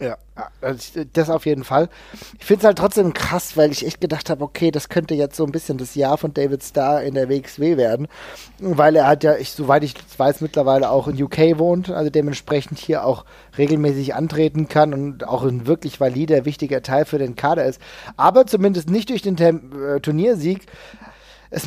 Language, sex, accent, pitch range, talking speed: German, male, German, 145-185 Hz, 195 wpm